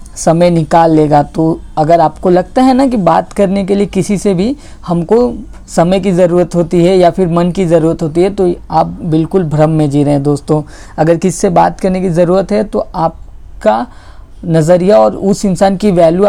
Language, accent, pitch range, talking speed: Hindi, native, 165-200 Hz, 200 wpm